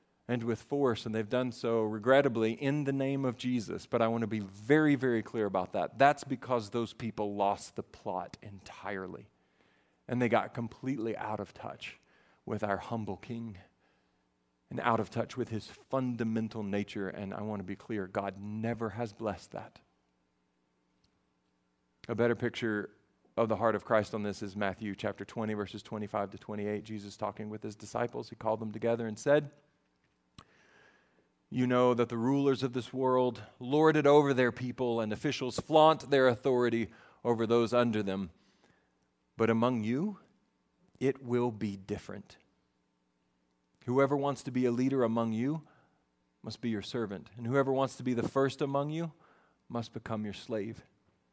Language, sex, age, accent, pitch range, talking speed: English, male, 40-59, American, 100-125 Hz, 165 wpm